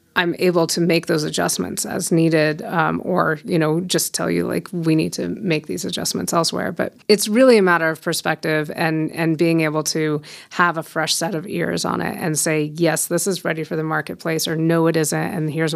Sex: female